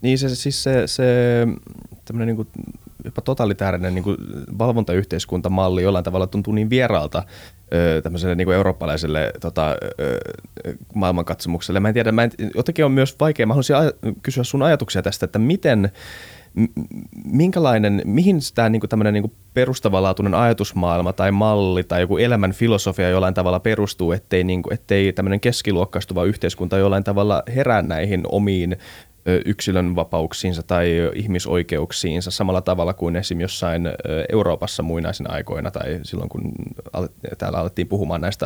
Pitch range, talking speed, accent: 90-110 Hz, 135 wpm, native